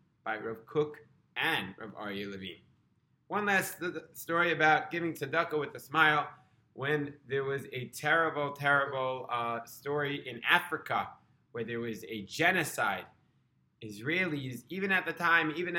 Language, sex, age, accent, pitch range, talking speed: English, male, 20-39, American, 115-150 Hz, 150 wpm